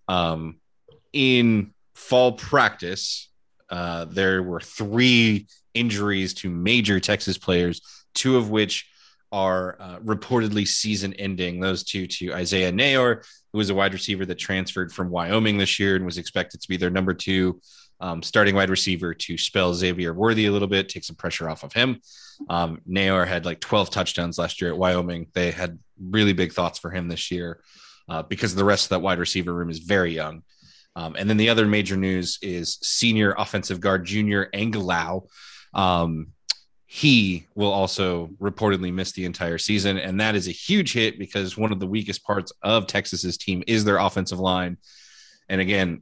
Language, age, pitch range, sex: English, 20-39, 90-105 Hz, male